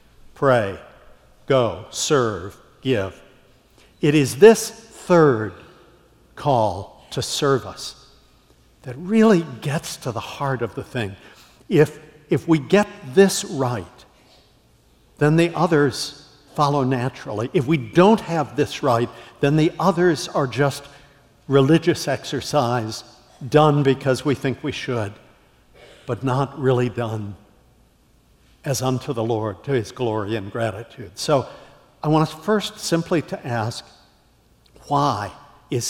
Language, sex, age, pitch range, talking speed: English, male, 60-79, 120-155 Hz, 125 wpm